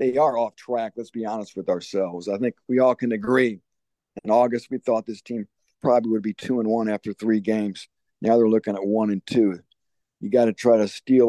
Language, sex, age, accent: English, male, 50-69, American